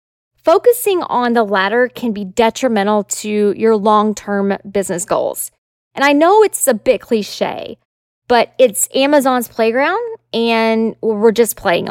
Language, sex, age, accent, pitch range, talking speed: English, female, 20-39, American, 210-285 Hz, 135 wpm